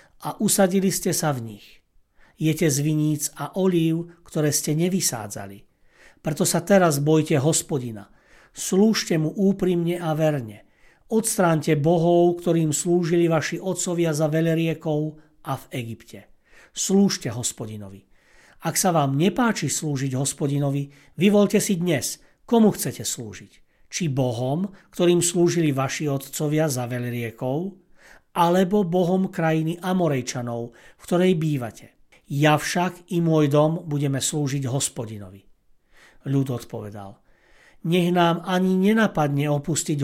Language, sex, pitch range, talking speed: Slovak, male, 140-175 Hz, 120 wpm